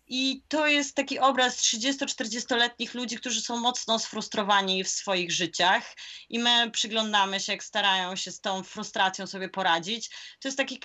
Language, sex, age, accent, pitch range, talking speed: Polish, female, 20-39, native, 190-235 Hz, 160 wpm